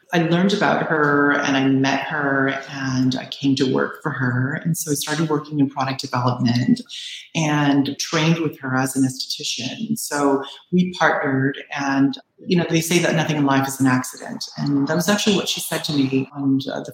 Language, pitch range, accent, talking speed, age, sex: English, 135-165 Hz, American, 200 wpm, 30-49, female